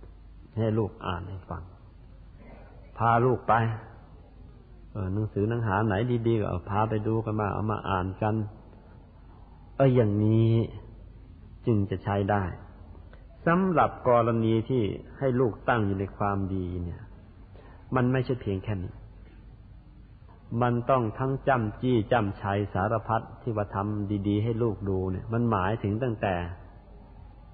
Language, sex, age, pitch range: Thai, male, 50-69, 95-120 Hz